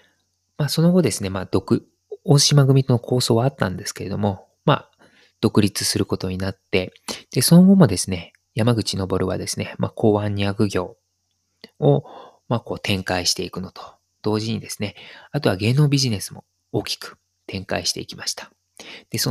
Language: Japanese